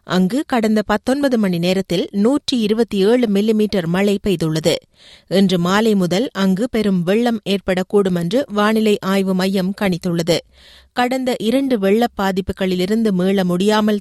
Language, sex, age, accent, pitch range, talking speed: Tamil, female, 30-49, native, 185-215 Hz, 110 wpm